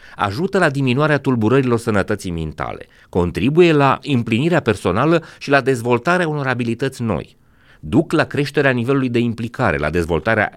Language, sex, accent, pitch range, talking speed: Romanian, male, native, 95-140 Hz, 135 wpm